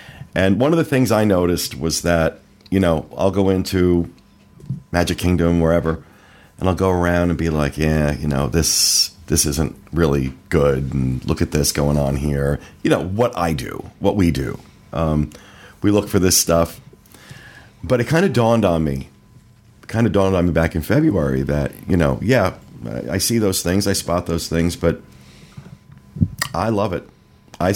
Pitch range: 80-105 Hz